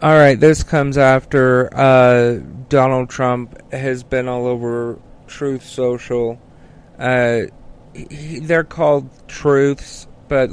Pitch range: 120-140 Hz